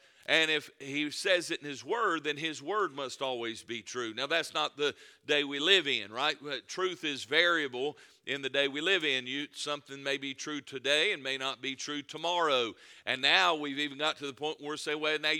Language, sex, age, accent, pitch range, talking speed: English, male, 50-69, American, 145-165 Hz, 220 wpm